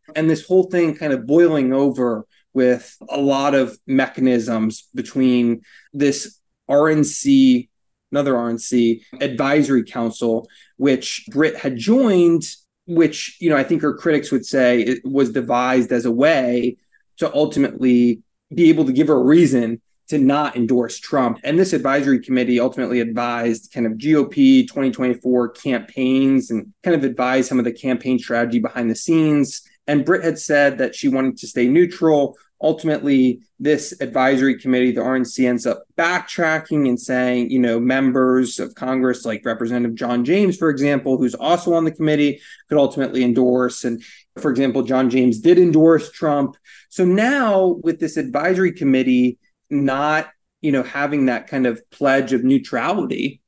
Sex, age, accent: male, 20-39, American